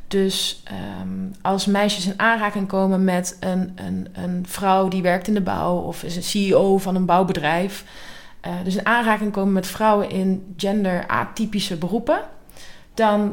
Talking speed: 160 wpm